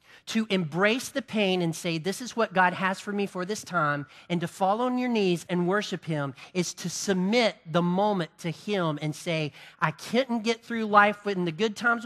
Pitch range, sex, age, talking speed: 135-195 Hz, male, 40-59, 215 wpm